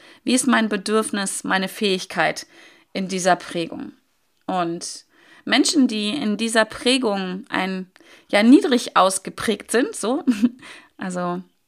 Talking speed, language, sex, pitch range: 115 wpm, German, female, 200-270 Hz